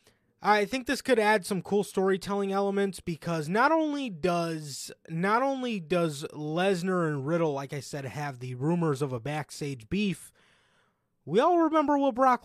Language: English